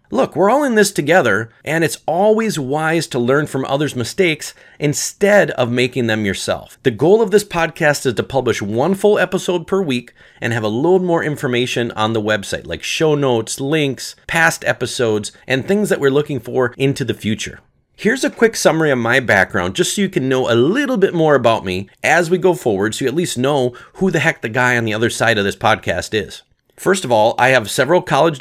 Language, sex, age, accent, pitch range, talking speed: English, male, 30-49, American, 110-160 Hz, 220 wpm